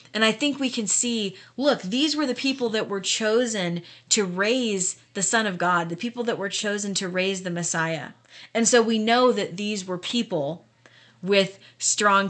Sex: female